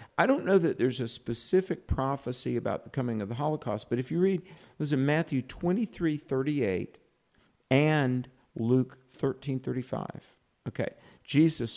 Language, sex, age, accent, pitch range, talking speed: English, male, 50-69, American, 115-140 Hz, 150 wpm